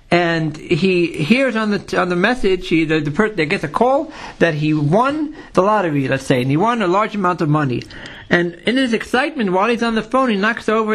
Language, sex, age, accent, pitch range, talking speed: English, male, 60-79, American, 170-230 Hz, 240 wpm